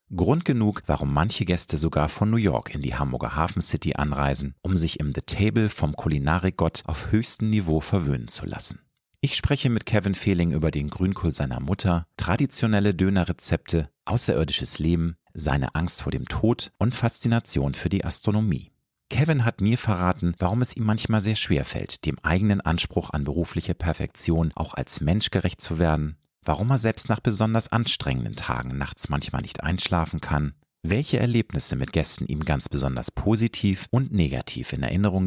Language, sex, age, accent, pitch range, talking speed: German, male, 40-59, German, 80-110 Hz, 170 wpm